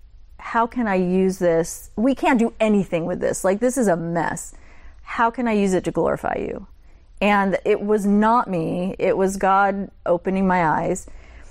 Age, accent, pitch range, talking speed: 40-59, American, 175-225 Hz, 180 wpm